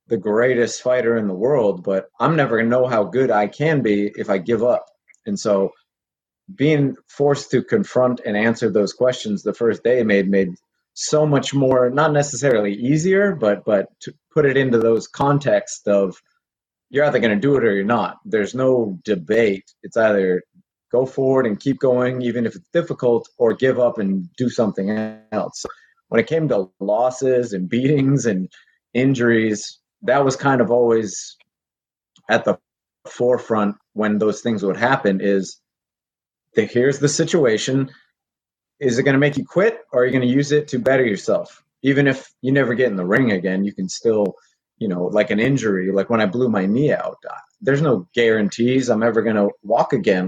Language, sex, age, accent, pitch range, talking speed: English, male, 30-49, American, 105-135 Hz, 185 wpm